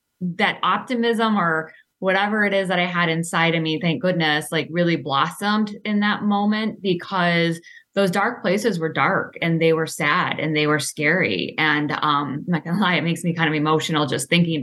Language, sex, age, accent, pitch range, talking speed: English, female, 10-29, American, 160-190 Hz, 195 wpm